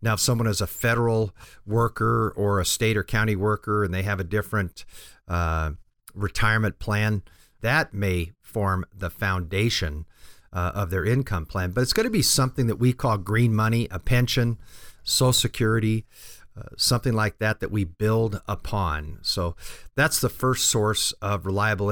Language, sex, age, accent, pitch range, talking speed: English, male, 50-69, American, 95-115 Hz, 165 wpm